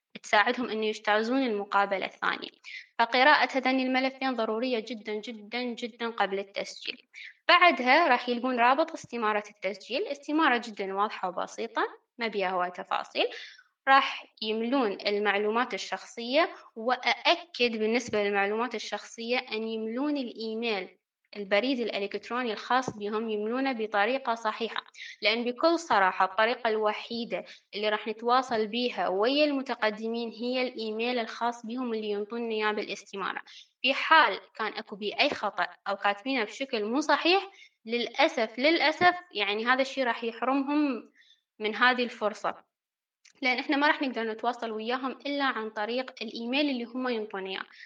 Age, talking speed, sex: 20-39, 125 wpm, female